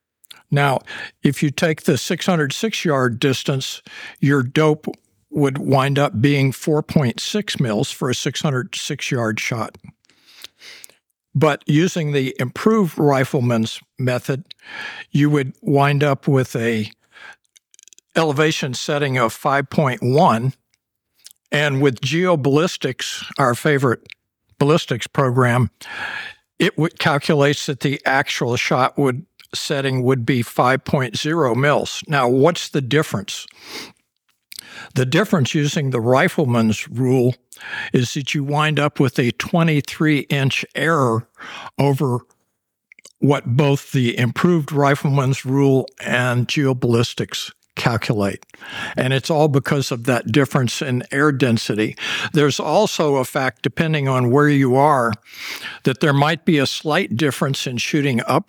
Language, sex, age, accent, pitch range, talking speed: English, male, 60-79, American, 125-155 Hz, 115 wpm